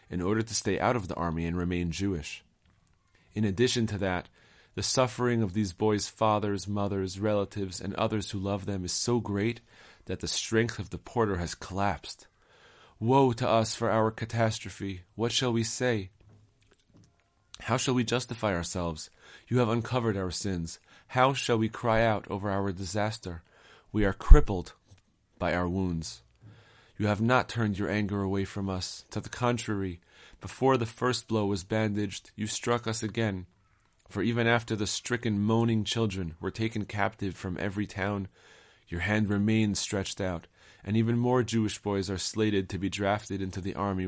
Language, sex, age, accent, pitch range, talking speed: English, male, 30-49, American, 95-115 Hz, 170 wpm